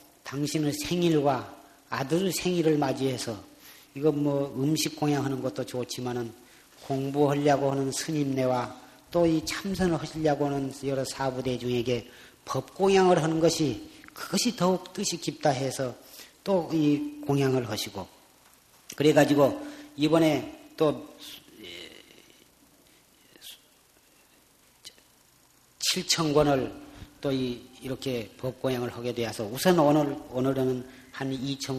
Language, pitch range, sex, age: Korean, 125-150 Hz, male, 40-59